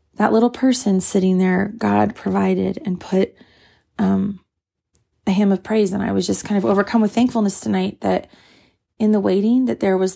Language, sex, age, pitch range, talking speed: English, female, 30-49, 185-210 Hz, 185 wpm